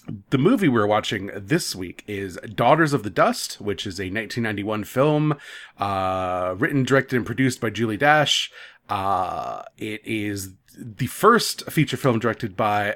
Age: 30-49